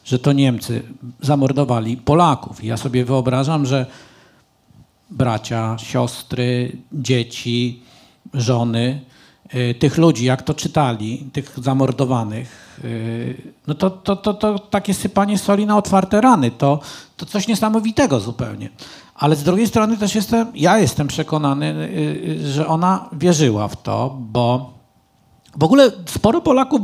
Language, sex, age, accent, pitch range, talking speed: Polish, male, 50-69, native, 125-195 Hz, 120 wpm